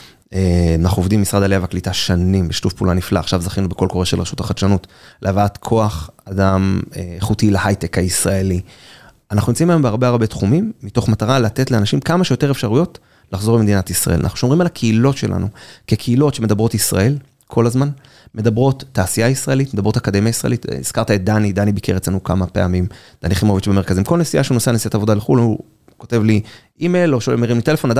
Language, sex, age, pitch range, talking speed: Hebrew, male, 30-49, 100-130 Hz, 145 wpm